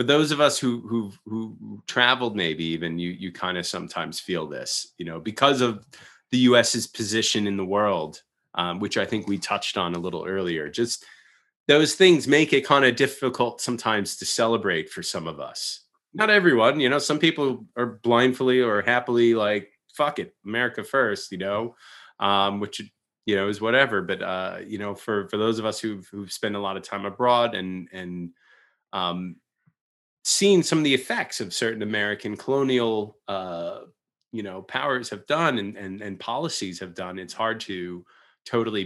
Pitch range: 95-120 Hz